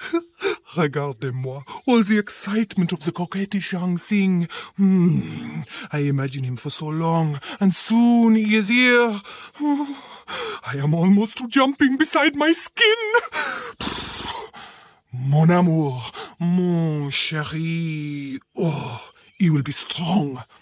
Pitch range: 145-225 Hz